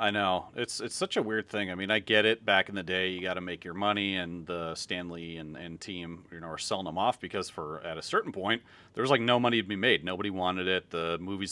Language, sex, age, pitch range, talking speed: English, male, 40-59, 90-105 Hz, 285 wpm